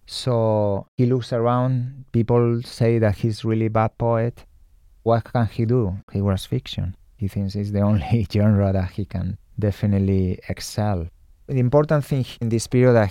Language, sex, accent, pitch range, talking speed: English, male, Spanish, 100-120 Hz, 175 wpm